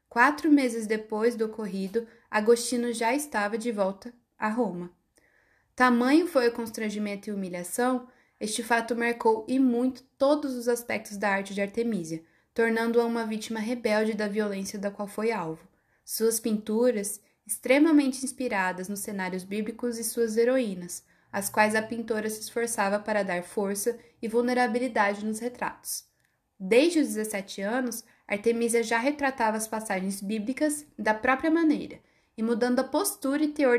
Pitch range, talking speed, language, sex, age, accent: 210-255 Hz, 145 wpm, Portuguese, female, 10-29, Brazilian